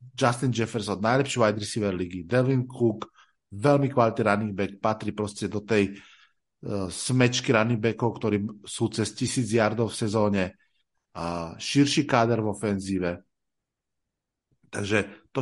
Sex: male